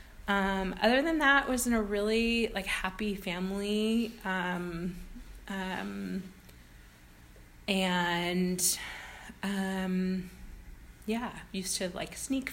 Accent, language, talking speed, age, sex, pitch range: American, English, 95 wpm, 20-39, female, 170-205 Hz